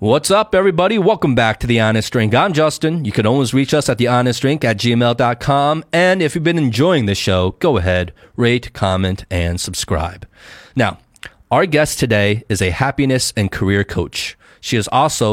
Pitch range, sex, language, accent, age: 100-125 Hz, male, Chinese, American, 30-49